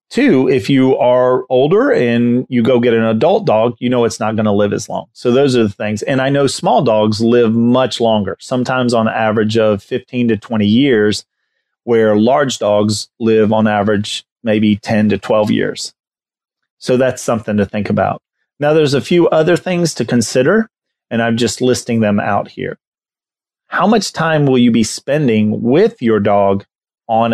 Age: 30-49